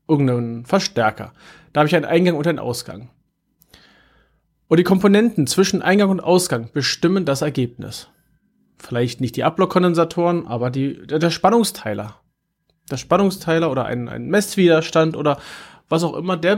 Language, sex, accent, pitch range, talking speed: German, male, German, 135-180 Hz, 140 wpm